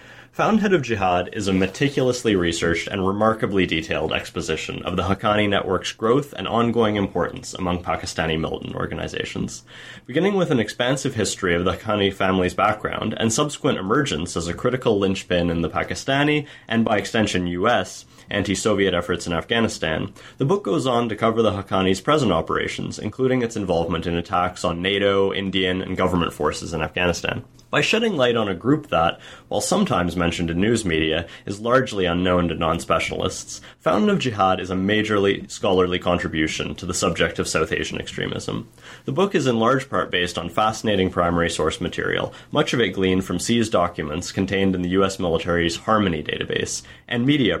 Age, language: 20-39, English